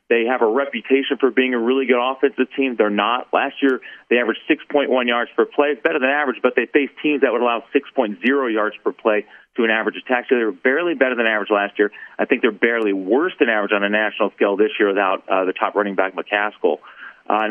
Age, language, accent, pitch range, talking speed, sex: 40-59, English, American, 105-135 Hz, 240 wpm, male